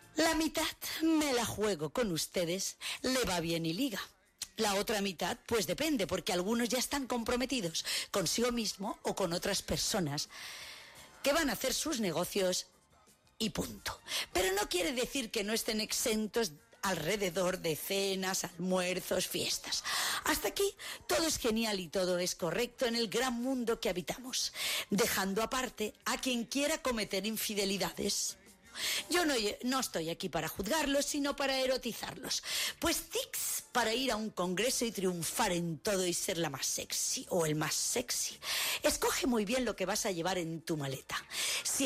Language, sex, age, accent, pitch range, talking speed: Spanish, female, 40-59, Spanish, 180-255 Hz, 160 wpm